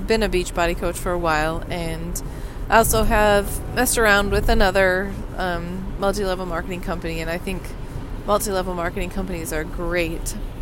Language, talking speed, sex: English, 160 wpm, female